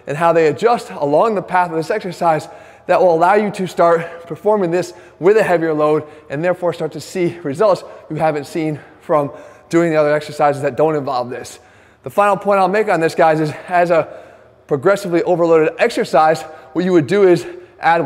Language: English